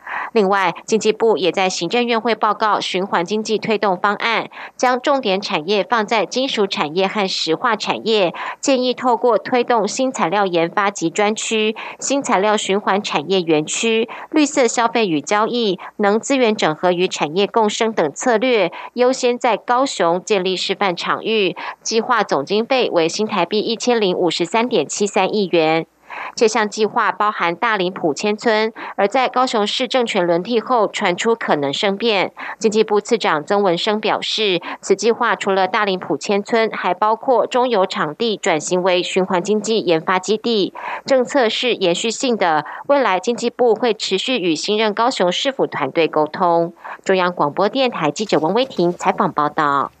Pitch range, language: 185-230 Hz, German